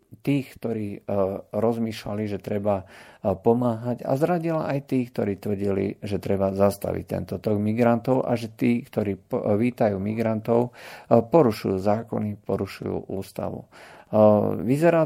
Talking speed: 115 wpm